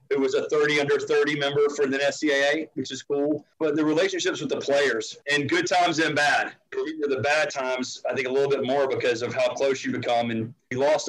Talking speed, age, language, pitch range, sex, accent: 225 wpm, 40-59, English, 125-150 Hz, male, American